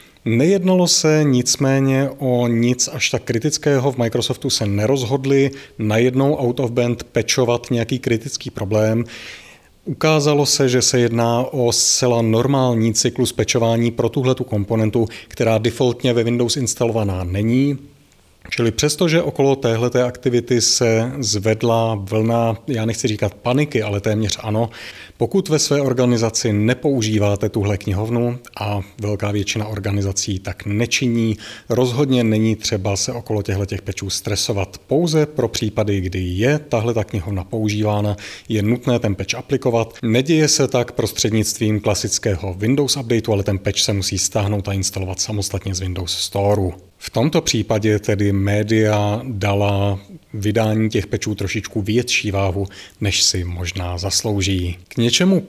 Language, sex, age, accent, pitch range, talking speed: Czech, male, 30-49, native, 100-125 Hz, 135 wpm